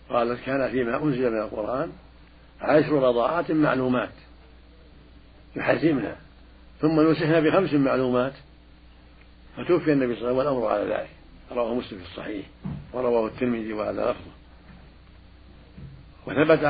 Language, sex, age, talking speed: Arabic, male, 60-79, 115 wpm